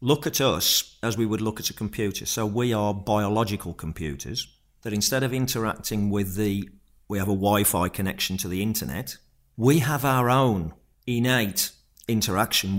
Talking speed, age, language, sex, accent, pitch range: 165 wpm, 50-69, English, male, British, 95-115 Hz